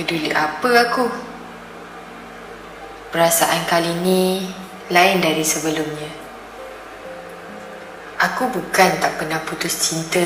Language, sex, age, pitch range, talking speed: Malay, female, 20-39, 160-190 Hz, 90 wpm